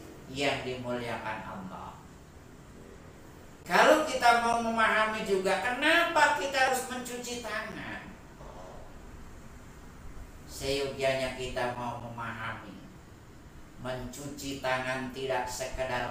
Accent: native